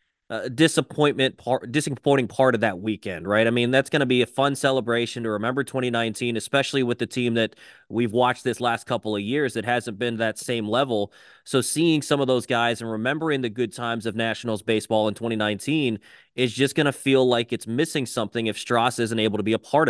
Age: 20-39